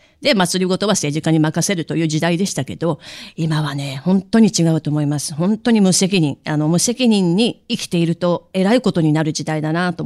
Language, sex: Japanese, female